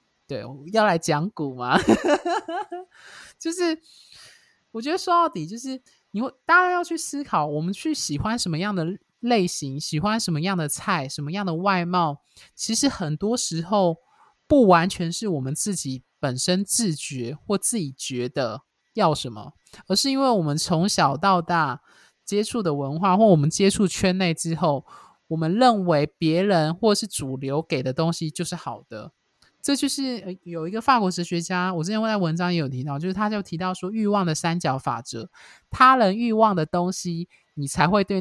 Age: 20-39